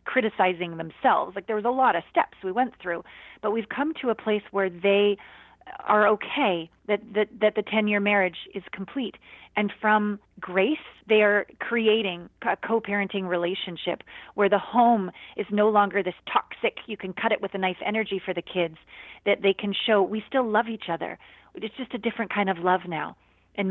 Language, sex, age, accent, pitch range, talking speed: English, female, 30-49, American, 185-220 Hz, 190 wpm